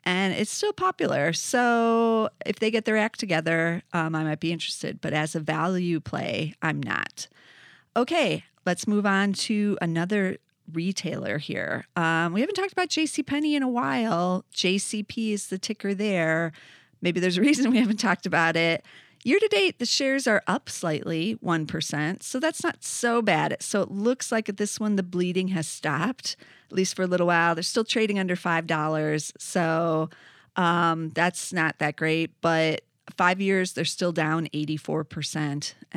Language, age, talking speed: English, 30-49, 170 wpm